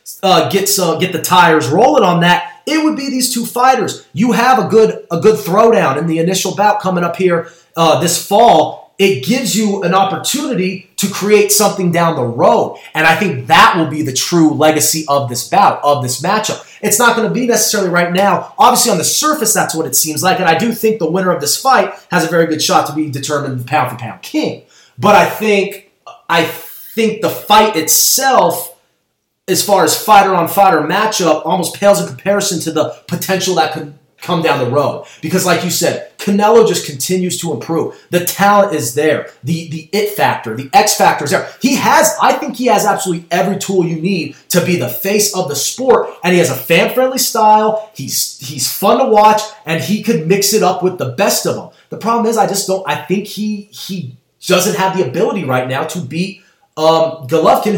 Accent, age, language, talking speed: American, 30-49, English, 215 wpm